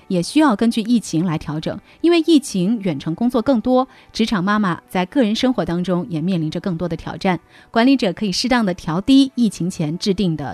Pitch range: 165-240 Hz